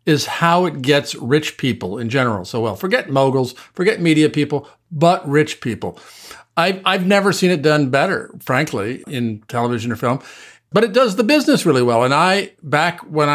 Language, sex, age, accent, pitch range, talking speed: English, male, 50-69, American, 125-170 Hz, 185 wpm